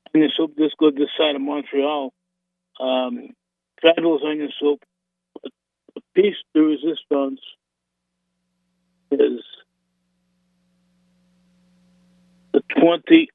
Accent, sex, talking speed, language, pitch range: American, male, 85 wpm, English, 130-180 Hz